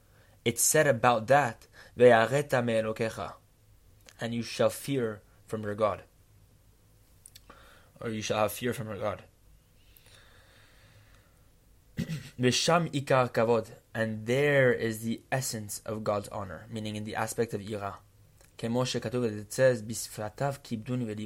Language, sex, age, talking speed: English, male, 20-39, 100 wpm